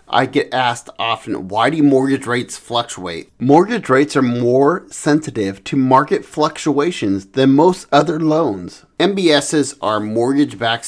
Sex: male